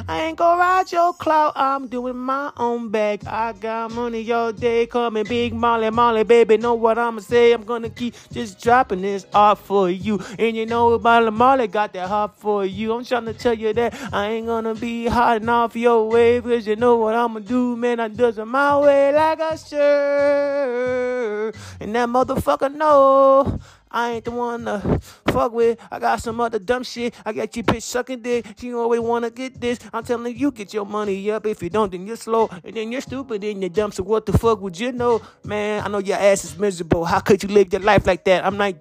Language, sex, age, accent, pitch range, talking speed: English, male, 20-39, American, 205-240 Hz, 225 wpm